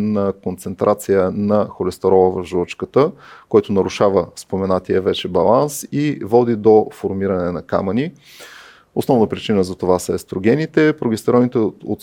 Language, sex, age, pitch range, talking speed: Bulgarian, male, 30-49, 95-140 Hz, 125 wpm